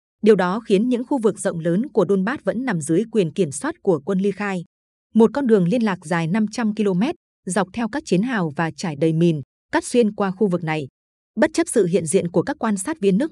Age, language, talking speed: 20-39, Vietnamese, 245 wpm